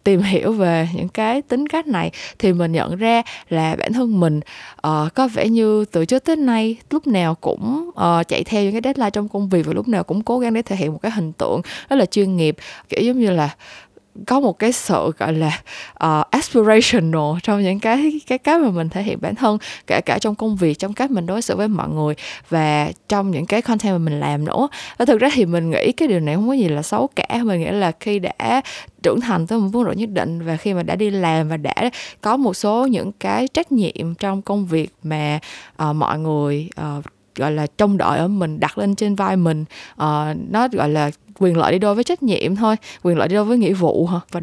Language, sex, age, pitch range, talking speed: Vietnamese, female, 20-39, 165-225 Hz, 240 wpm